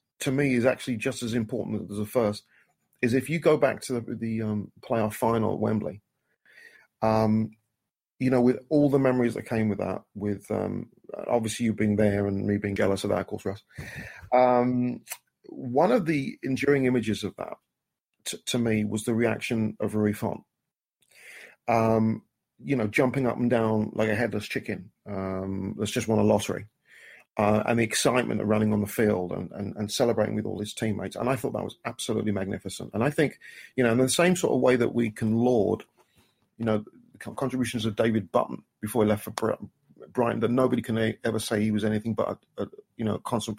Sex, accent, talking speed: male, British, 205 wpm